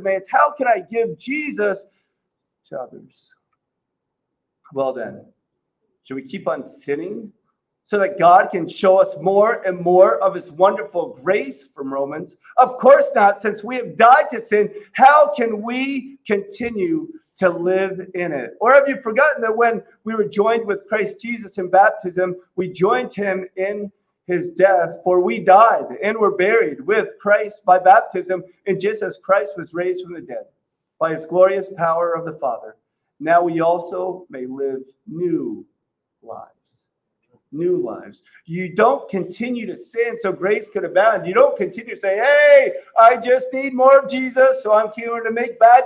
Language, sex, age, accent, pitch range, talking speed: English, male, 40-59, American, 185-245 Hz, 165 wpm